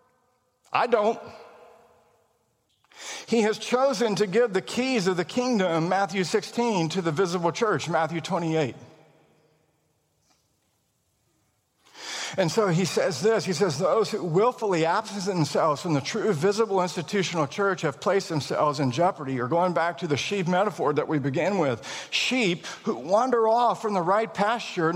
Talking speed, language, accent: 150 wpm, English, American